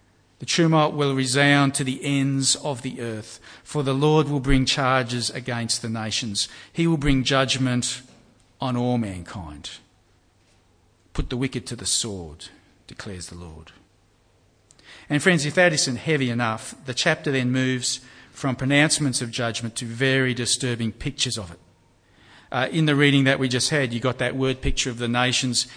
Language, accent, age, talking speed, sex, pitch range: English, Australian, 50-69, 170 wpm, male, 115-140 Hz